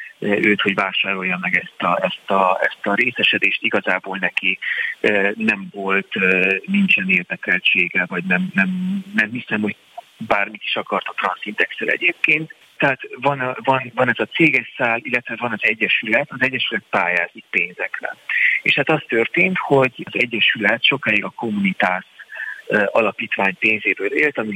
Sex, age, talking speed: male, 30-49, 145 wpm